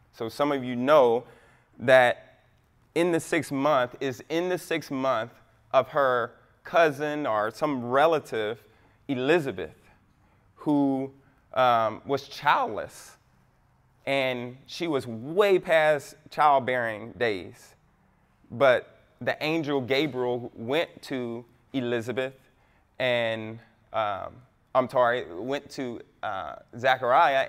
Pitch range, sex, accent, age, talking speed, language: 120-150 Hz, male, American, 20-39, 105 wpm, English